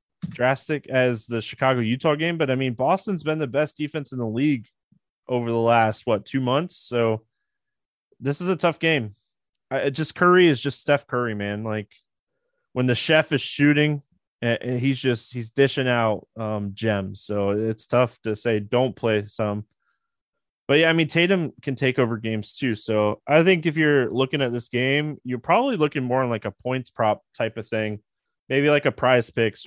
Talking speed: 190 wpm